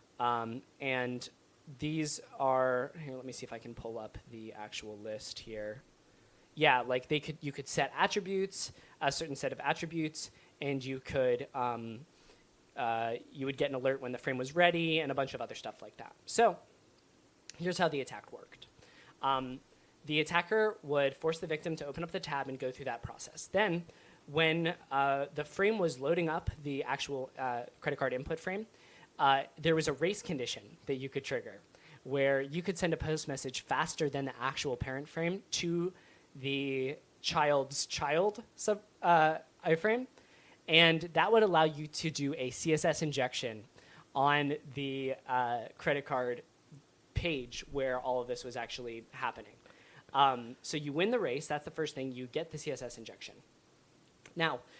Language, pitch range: English, 130-160 Hz